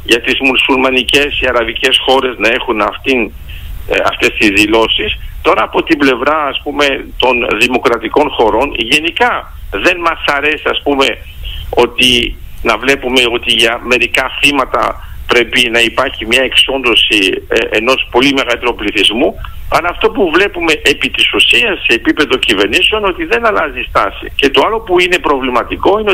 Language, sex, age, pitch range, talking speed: Greek, male, 50-69, 120-185 Hz, 145 wpm